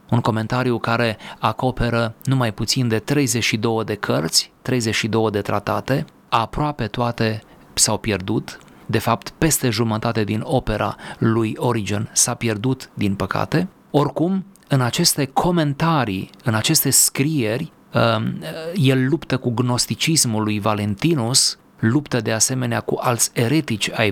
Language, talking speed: Romanian, 120 wpm